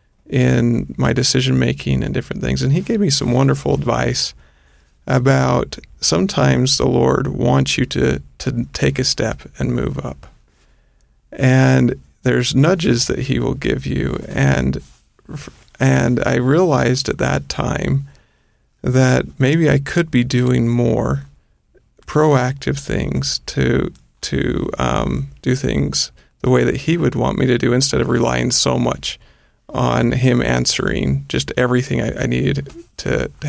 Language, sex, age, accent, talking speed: English, male, 40-59, American, 140 wpm